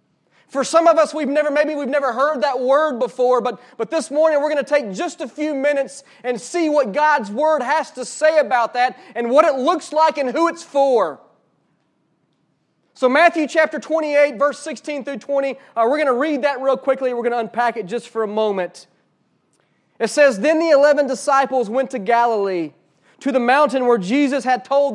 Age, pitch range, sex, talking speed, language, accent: 30-49, 245-305 Hz, male, 195 wpm, English, American